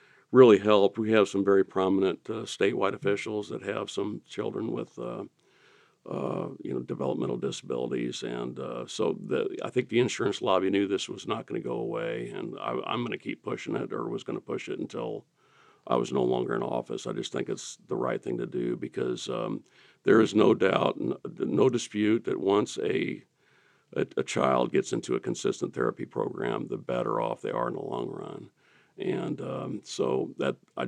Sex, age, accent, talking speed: male, 60-79, American, 200 wpm